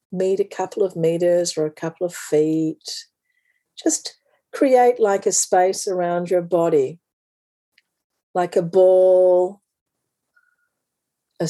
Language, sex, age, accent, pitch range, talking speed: English, female, 50-69, Australian, 175-230 Hz, 115 wpm